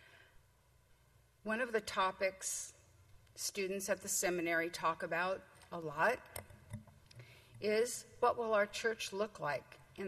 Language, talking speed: English, 120 wpm